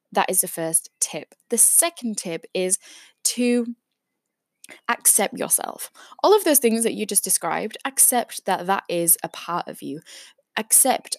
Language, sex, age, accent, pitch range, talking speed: English, female, 10-29, British, 175-245 Hz, 155 wpm